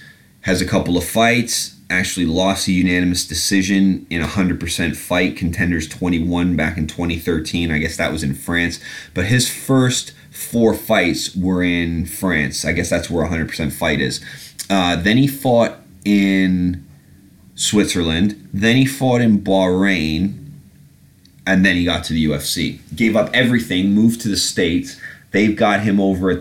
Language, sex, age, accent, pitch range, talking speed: English, male, 30-49, American, 85-105 Hz, 160 wpm